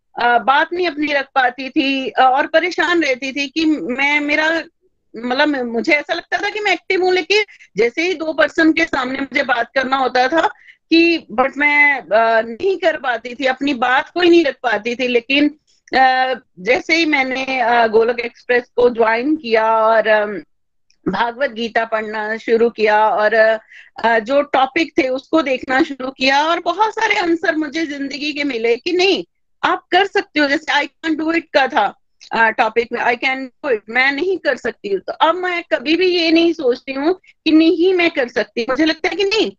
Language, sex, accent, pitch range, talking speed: Hindi, female, native, 255-330 Hz, 195 wpm